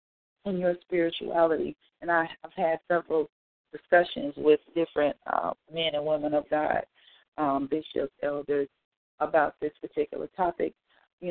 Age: 40-59